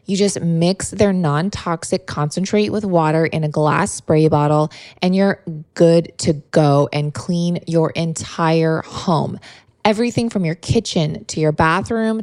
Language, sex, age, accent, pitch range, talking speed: English, female, 20-39, American, 165-205 Hz, 145 wpm